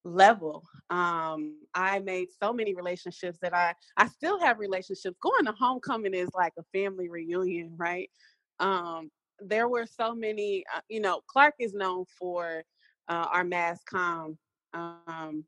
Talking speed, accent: 150 wpm, American